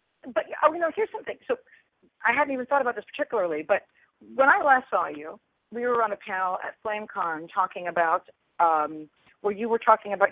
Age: 40-59